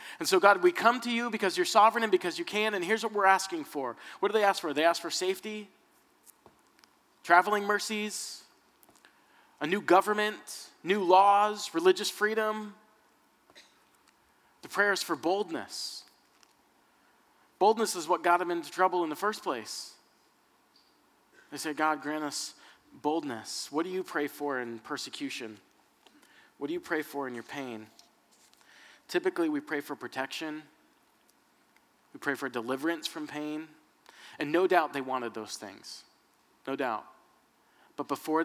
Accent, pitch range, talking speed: American, 145-195 Hz, 150 wpm